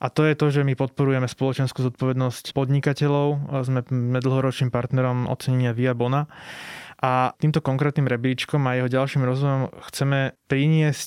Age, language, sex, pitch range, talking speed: 20-39, Slovak, male, 125-140 Hz, 135 wpm